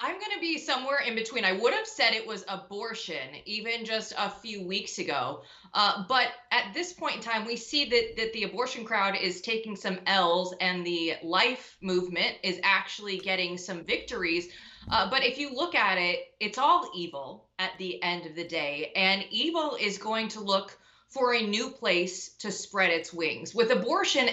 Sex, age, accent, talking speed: female, 20-39, American, 195 wpm